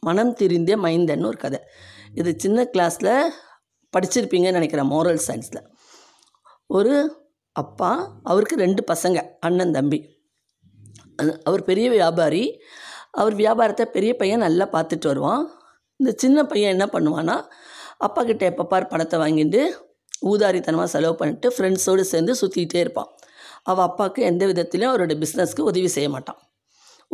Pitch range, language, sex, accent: 170-215 Hz, Tamil, female, native